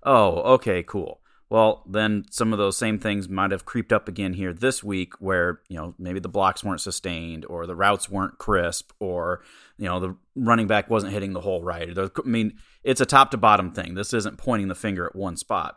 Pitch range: 90-110 Hz